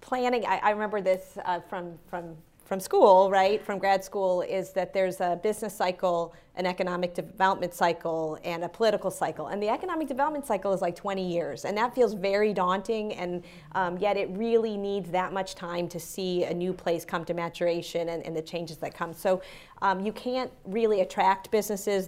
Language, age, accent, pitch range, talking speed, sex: English, 30-49, American, 175-205 Hz, 195 wpm, female